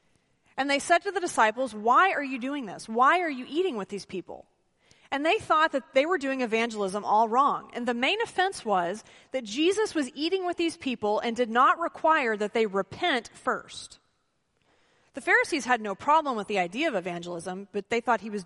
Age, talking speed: 30-49, 205 wpm